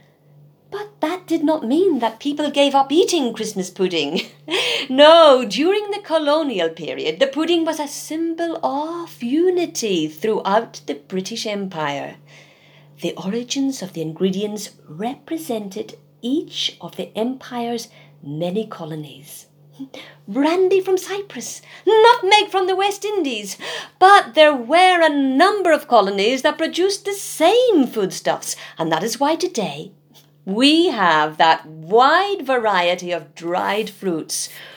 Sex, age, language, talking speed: female, 50-69, English, 130 wpm